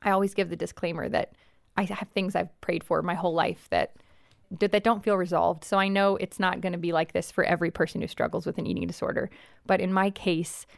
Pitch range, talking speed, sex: 180-215 Hz, 240 wpm, female